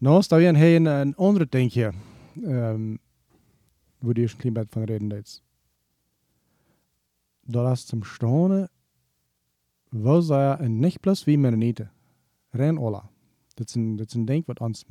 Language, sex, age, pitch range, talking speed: German, male, 40-59, 110-145 Hz, 105 wpm